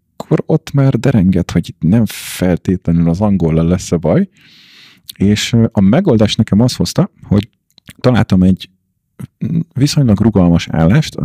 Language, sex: Hungarian, male